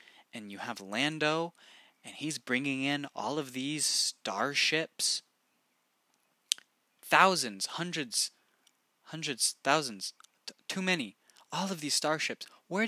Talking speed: 110 wpm